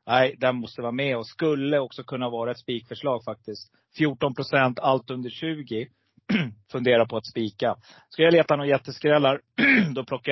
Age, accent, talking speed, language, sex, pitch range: 30-49, native, 165 wpm, Swedish, male, 115-140 Hz